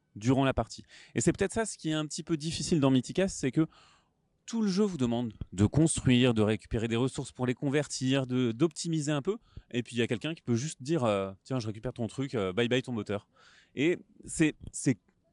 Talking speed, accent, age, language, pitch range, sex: 225 wpm, French, 30-49, French, 115-155 Hz, male